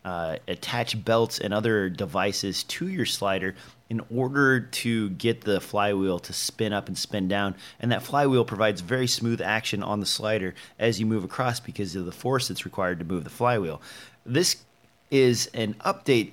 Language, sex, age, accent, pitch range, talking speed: English, male, 30-49, American, 100-125 Hz, 180 wpm